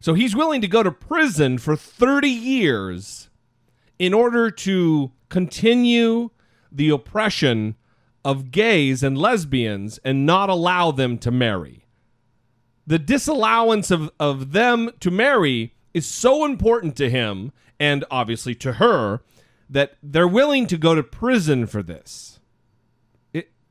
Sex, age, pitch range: male, 40-59, 120-185 Hz